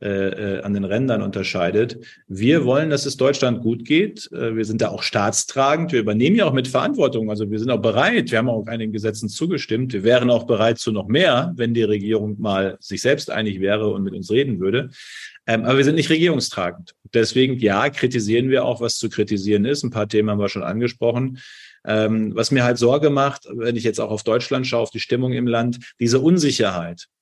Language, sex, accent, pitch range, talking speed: German, male, German, 110-130 Hz, 205 wpm